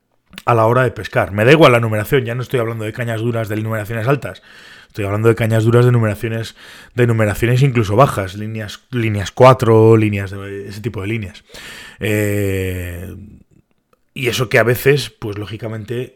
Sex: male